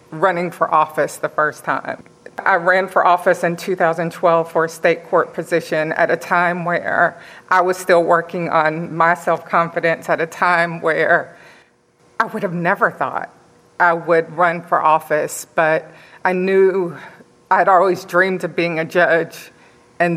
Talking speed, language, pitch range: 160 wpm, English, 170-190 Hz